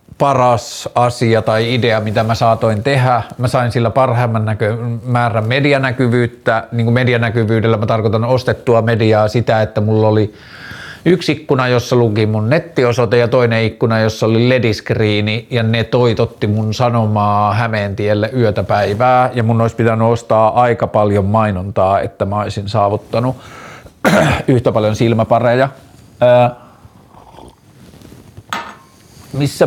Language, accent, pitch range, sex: Finnish, native, 110-130 Hz, male